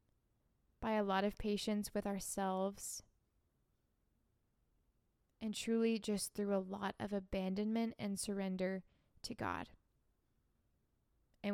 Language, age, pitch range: English, 20-39, 190-210 Hz